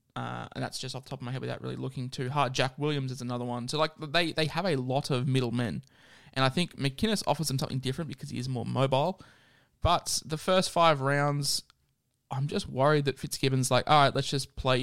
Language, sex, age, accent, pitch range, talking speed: English, male, 20-39, Australian, 120-140 Hz, 235 wpm